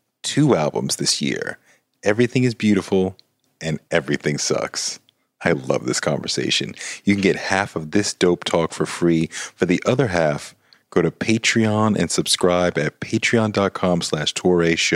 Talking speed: 145 wpm